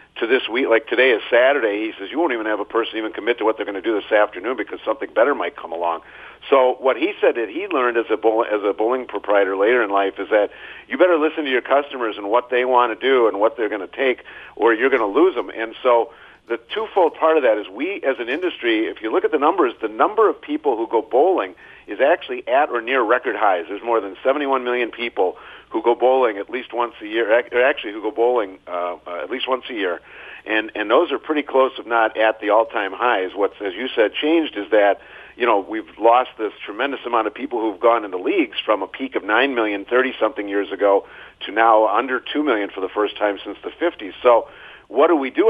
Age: 50-69